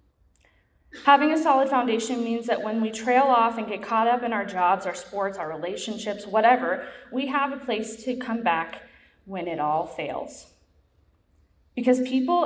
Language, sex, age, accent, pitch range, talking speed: English, female, 20-39, American, 205-260 Hz, 170 wpm